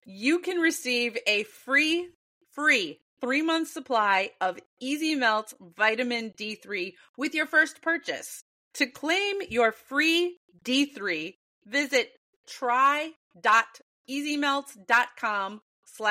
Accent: American